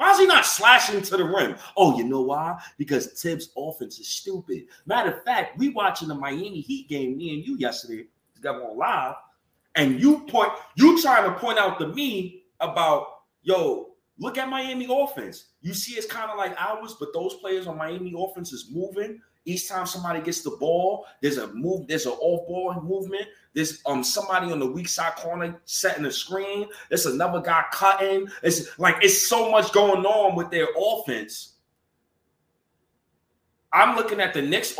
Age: 30-49